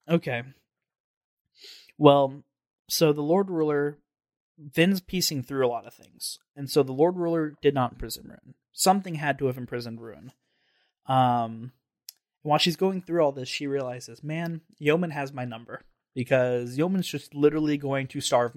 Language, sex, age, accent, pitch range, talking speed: English, male, 20-39, American, 125-155 Hz, 160 wpm